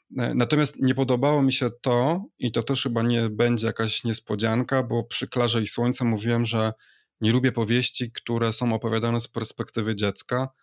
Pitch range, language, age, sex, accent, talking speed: 110-125 Hz, Polish, 20-39, male, native, 170 wpm